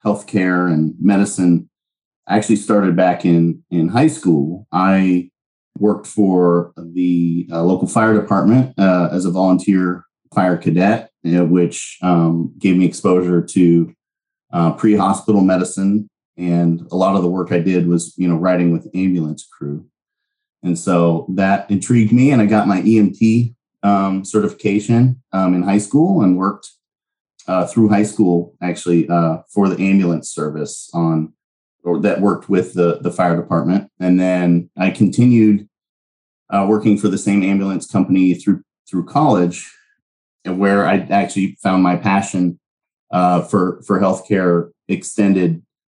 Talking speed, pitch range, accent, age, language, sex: 150 wpm, 85-100 Hz, American, 30-49, English, male